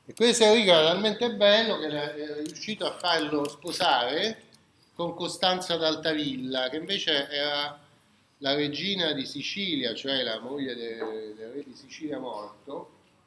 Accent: native